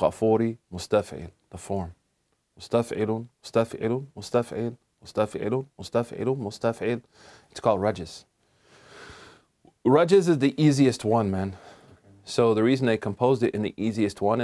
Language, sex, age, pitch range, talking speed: English, male, 30-49, 100-120 Hz, 95 wpm